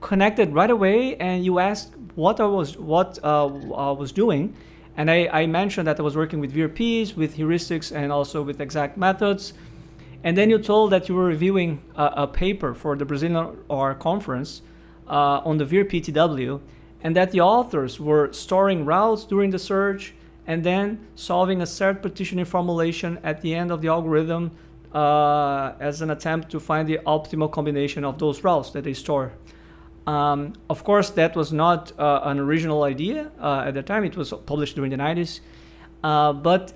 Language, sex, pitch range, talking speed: English, male, 150-195 Hz, 175 wpm